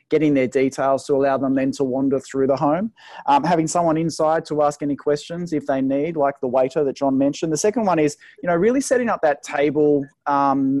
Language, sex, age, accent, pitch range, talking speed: English, male, 20-39, Australian, 140-155 Hz, 230 wpm